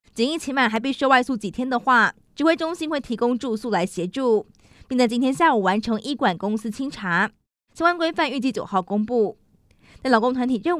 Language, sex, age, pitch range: Chinese, female, 20-39, 220-280 Hz